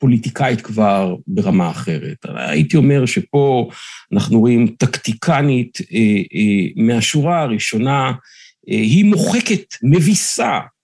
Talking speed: 85 wpm